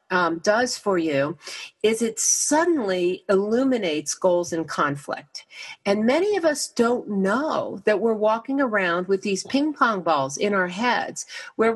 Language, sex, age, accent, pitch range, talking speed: English, female, 50-69, American, 195-250 Hz, 155 wpm